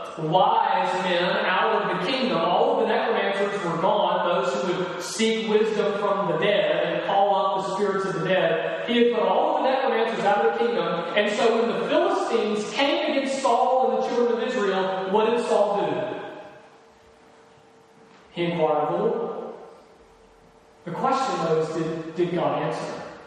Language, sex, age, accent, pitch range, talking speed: English, male, 30-49, American, 170-215 Hz, 175 wpm